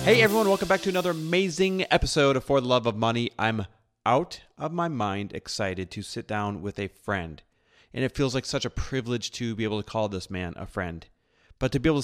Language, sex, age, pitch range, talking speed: English, male, 30-49, 105-135 Hz, 230 wpm